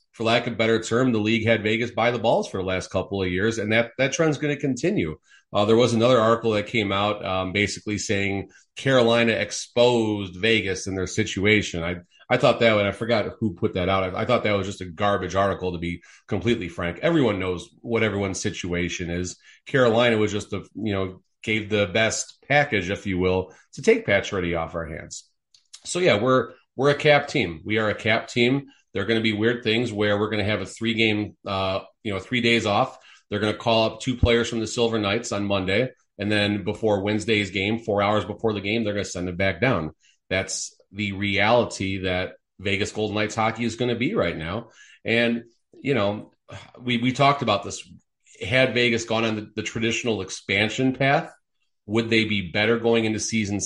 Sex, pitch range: male, 100-115 Hz